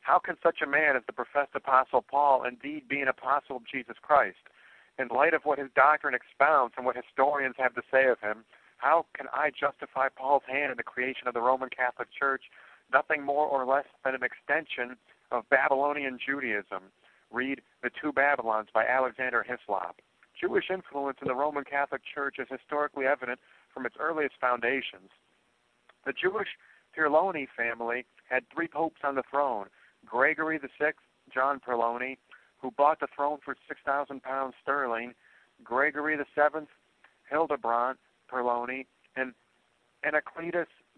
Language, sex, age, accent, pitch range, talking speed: English, male, 50-69, American, 125-145 Hz, 160 wpm